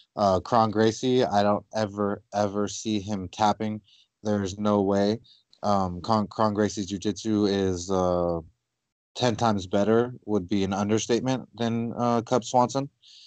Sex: male